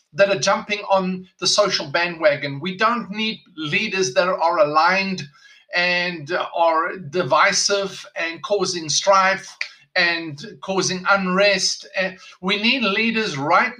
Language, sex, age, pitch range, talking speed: English, male, 50-69, 180-215 Hz, 115 wpm